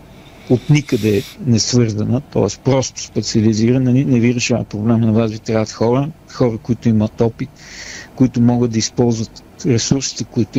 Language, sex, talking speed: Bulgarian, male, 155 wpm